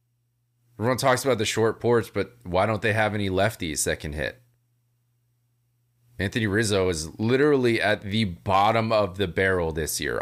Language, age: English, 30-49